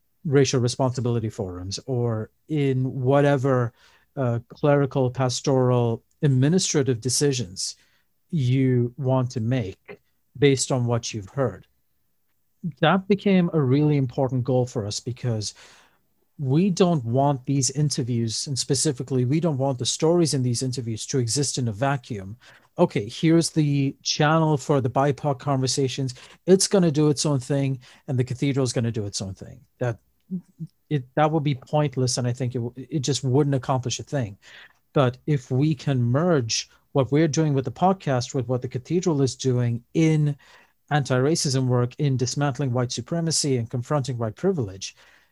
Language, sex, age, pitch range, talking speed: English, male, 40-59, 125-150 Hz, 155 wpm